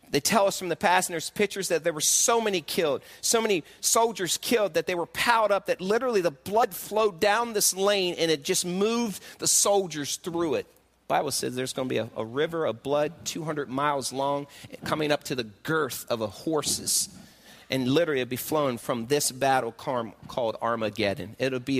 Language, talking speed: English, 205 wpm